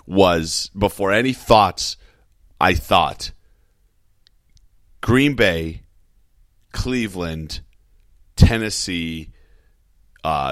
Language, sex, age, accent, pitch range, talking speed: English, male, 30-49, American, 85-100 Hz, 65 wpm